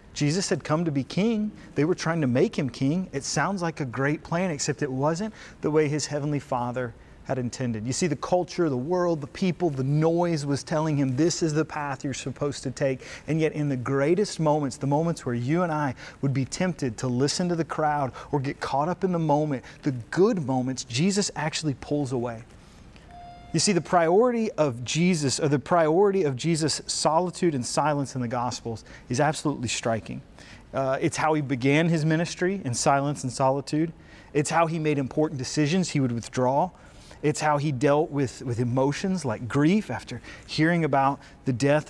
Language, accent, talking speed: English, American, 200 wpm